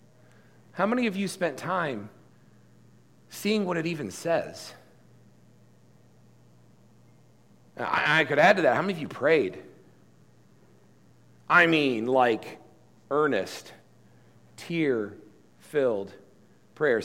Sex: male